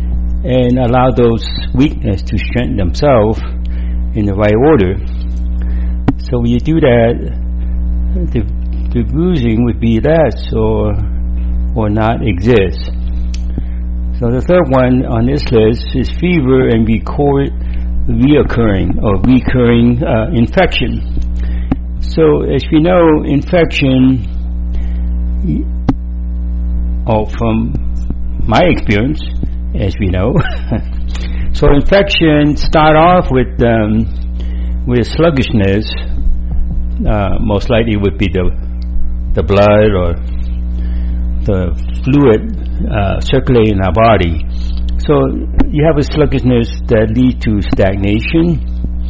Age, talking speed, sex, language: 60-79, 110 wpm, male, English